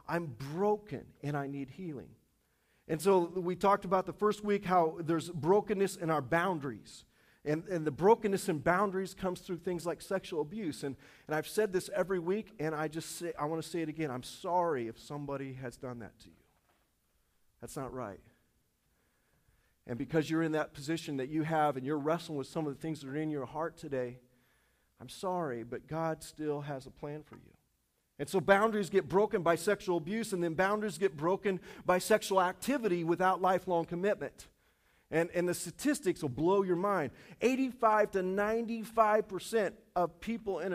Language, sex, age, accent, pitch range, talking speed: English, male, 40-59, American, 145-190 Hz, 185 wpm